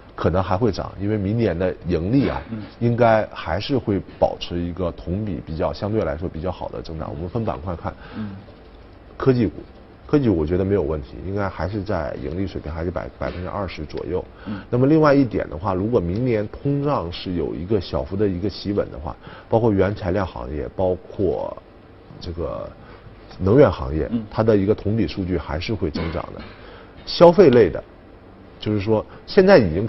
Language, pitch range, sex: Chinese, 90-115 Hz, male